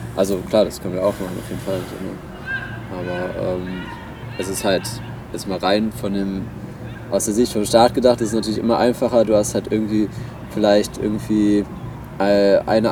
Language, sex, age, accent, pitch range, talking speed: German, male, 20-39, German, 100-120 Hz, 175 wpm